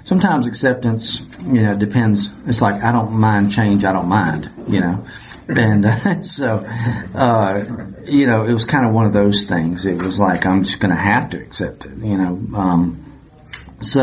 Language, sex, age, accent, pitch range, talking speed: English, male, 40-59, American, 95-115 Hz, 195 wpm